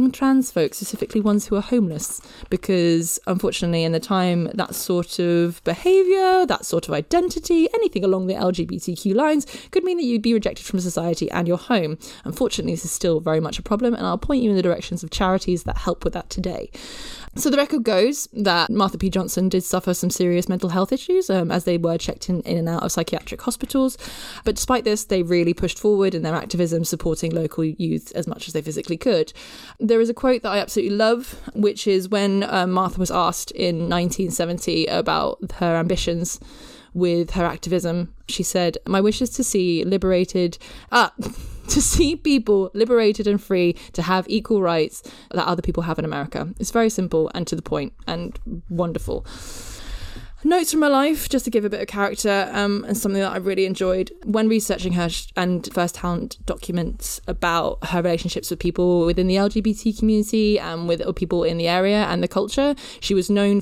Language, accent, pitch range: English, British, 175-220 Hz